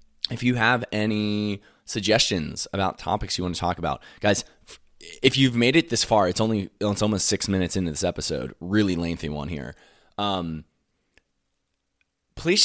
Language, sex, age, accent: English, male, 20-39, American